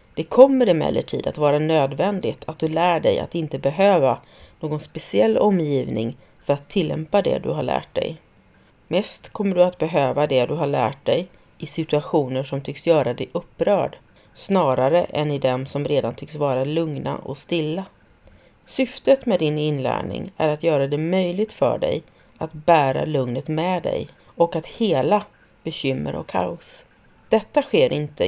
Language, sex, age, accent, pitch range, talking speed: Swedish, female, 30-49, native, 140-180 Hz, 165 wpm